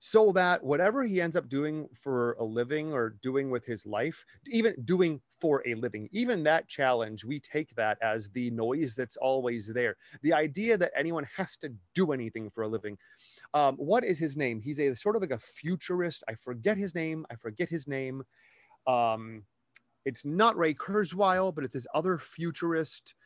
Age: 30-49